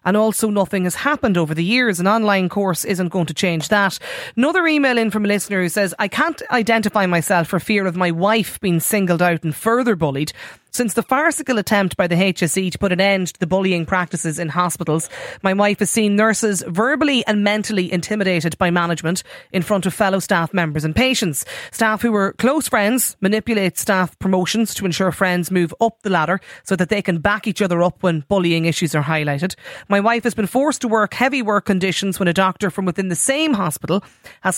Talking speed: 210 wpm